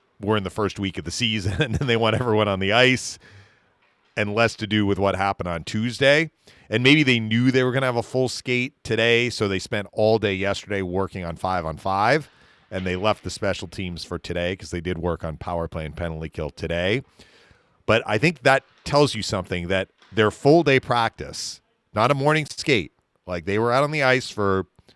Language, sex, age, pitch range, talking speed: English, male, 40-59, 95-125 Hz, 220 wpm